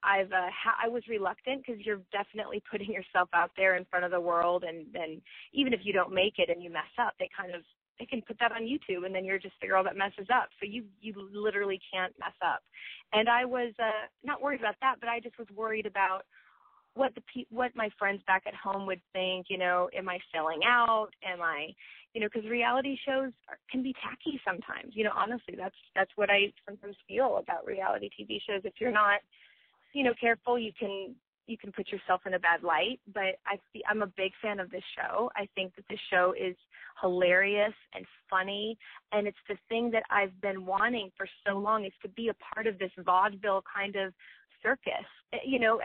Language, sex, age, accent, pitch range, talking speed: English, female, 30-49, American, 190-230 Hz, 225 wpm